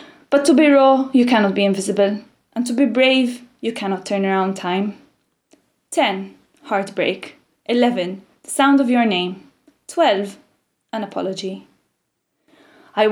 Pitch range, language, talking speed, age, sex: 205-265 Hz, English, 135 wpm, 20-39, female